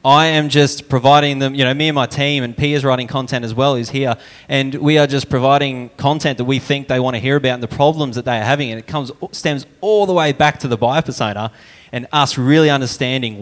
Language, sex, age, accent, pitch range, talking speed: English, male, 20-39, Australian, 120-140 Hz, 250 wpm